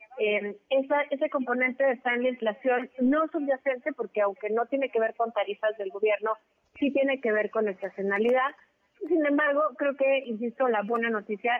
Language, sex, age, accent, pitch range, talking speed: Spanish, female, 30-49, Mexican, 210-265 Hz, 175 wpm